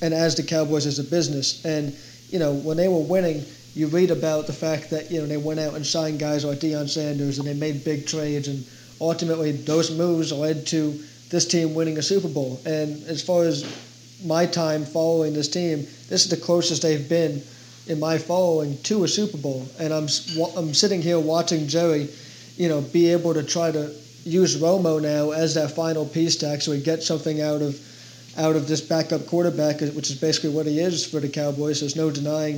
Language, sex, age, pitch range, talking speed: English, male, 30-49, 145-165 Hz, 210 wpm